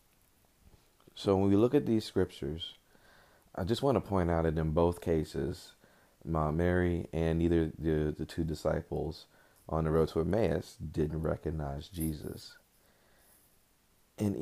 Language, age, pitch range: English, 40-59, 80-100 Hz